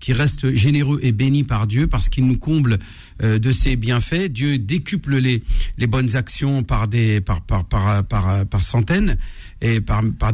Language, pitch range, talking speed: French, 115-165 Hz, 180 wpm